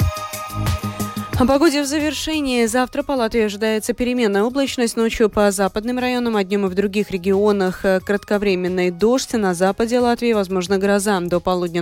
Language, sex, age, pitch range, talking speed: Russian, female, 20-39, 175-230 Hz, 145 wpm